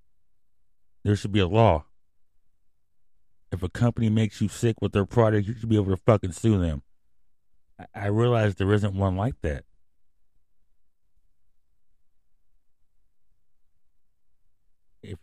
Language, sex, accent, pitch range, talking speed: English, male, American, 85-105 Hz, 120 wpm